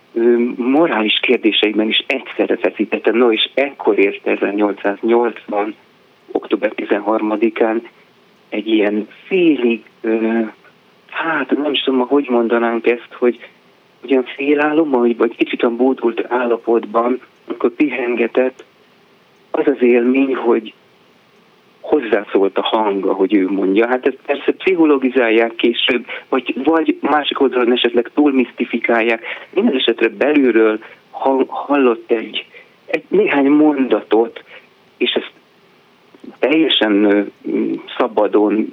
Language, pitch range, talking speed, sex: Hungarian, 110-145 Hz, 100 wpm, male